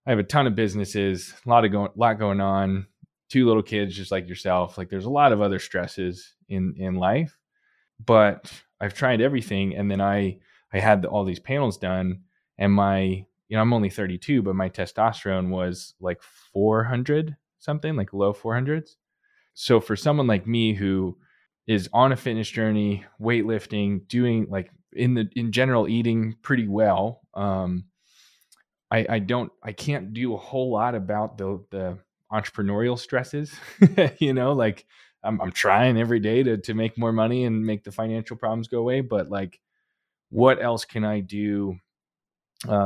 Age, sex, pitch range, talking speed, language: 20-39, male, 95-120 Hz, 175 wpm, English